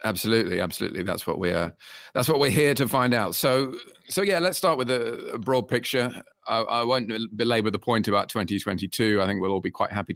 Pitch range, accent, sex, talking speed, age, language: 95-130 Hz, British, male, 225 wpm, 40-59, English